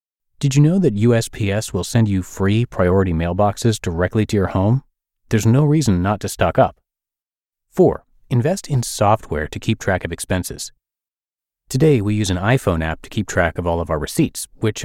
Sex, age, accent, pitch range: male, 30-49, American, 85-120 Hz